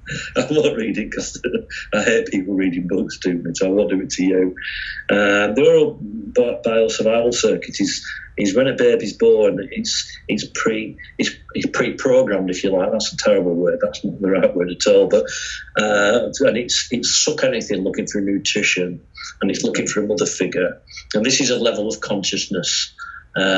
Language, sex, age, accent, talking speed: English, male, 40-59, British, 185 wpm